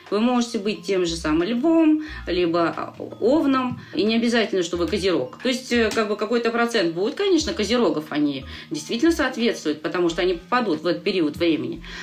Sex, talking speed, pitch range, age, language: female, 175 wpm, 170-245 Hz, 30-49, Russian